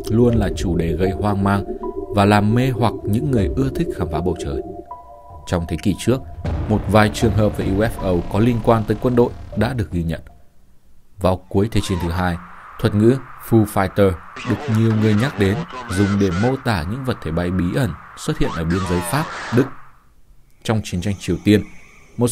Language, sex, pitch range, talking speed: Vietnamese, male, 90-115 Hz, 205 wpm